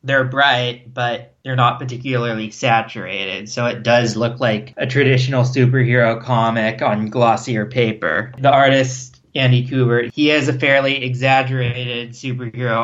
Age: 20-39